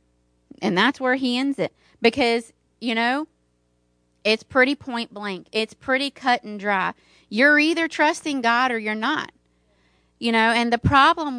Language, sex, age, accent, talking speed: English, female, 30-49, American, 160 wpm